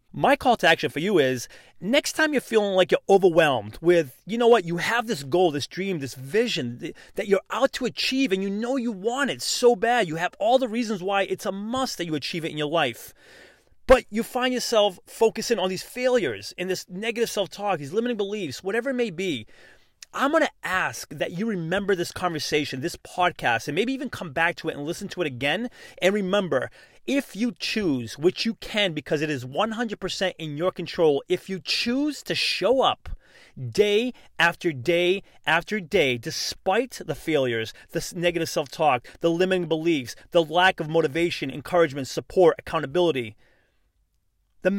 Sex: male